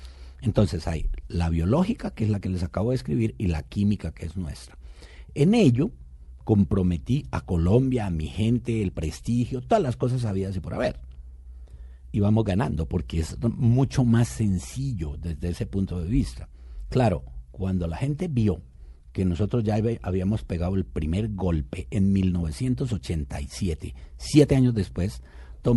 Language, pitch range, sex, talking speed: Spanish, 75-115 Hz, male, 155 wpm